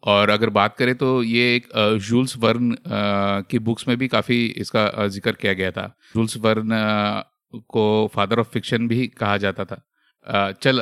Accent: native